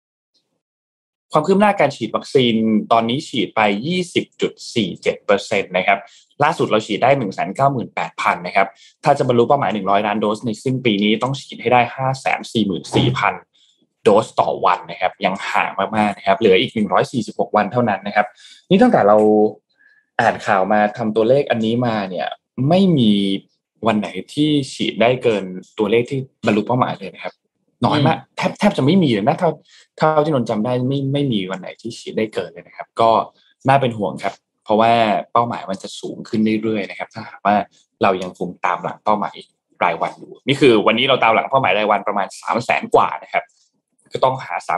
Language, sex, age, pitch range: Thai, male, 20-39, 105-130 Hz